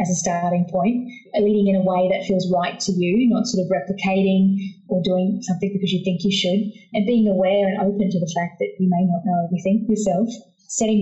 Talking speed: 225 wpm